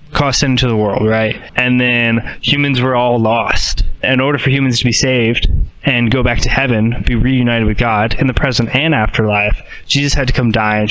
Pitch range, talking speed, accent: 115-145 Hz, 210 wpm, American